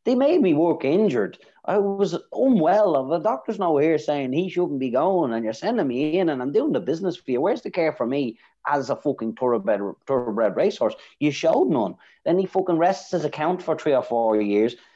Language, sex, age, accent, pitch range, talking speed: English, male, 30-49, Irish, 110-155 Hz, 215 wpm